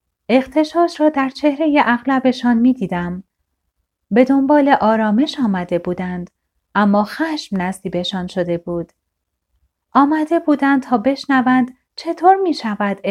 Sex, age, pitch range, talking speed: female, 30-49, 195-280 Hz, 110 wpm